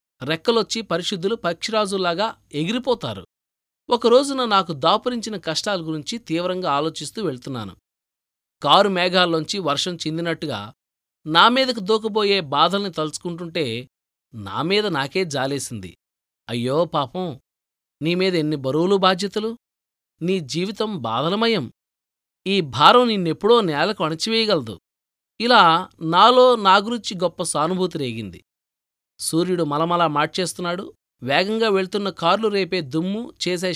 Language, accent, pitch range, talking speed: Telugu, native, 145-200 Hz, 90 wpm